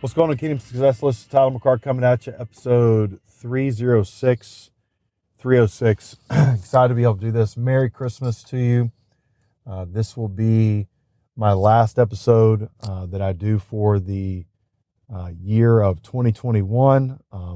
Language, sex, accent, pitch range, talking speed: English, male, American, 100-120 Hz, 145 wpm